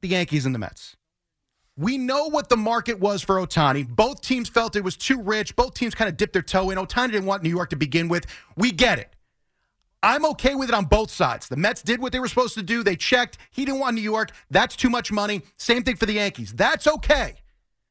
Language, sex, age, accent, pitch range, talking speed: English, male, 30-49, American, 140-215 Hz, 245 wpm